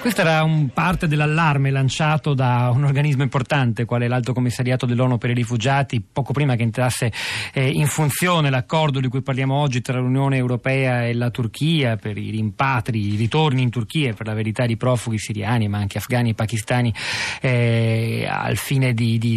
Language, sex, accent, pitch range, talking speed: Italian, male, native, 120-145 Hz, 175 wpm